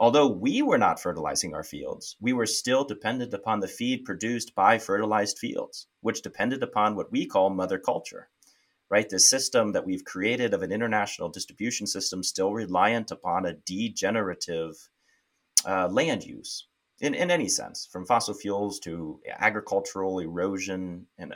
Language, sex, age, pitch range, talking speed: English, male, 30-49, 90-110 Hz, 155 wpm